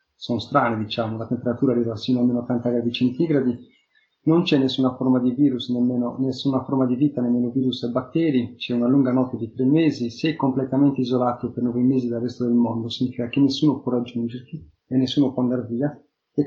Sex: male